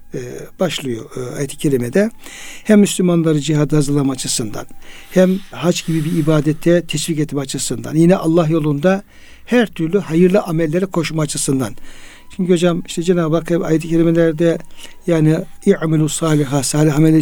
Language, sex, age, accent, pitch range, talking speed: Turkish, male, 60-79, native, 155-190 Hz, 130 wpm